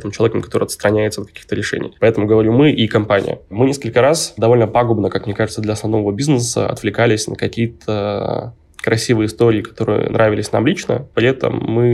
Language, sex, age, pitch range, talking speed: Russian, male, 20-39, 105-115 Hz, 170 wpm